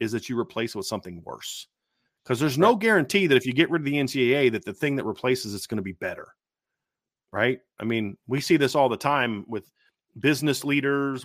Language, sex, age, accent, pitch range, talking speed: English, male, 30-49, American, 120-145 Hz, 225 wpm